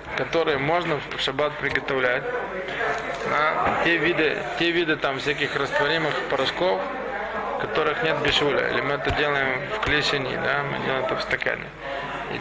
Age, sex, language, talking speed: 20-39, male, Russian, 145 wpm